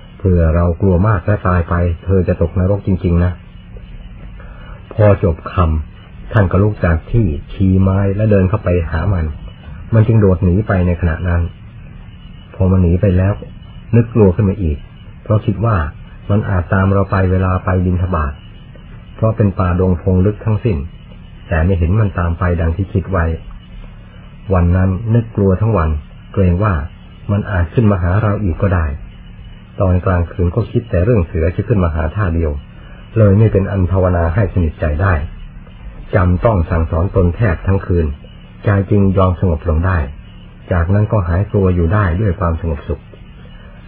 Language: Thai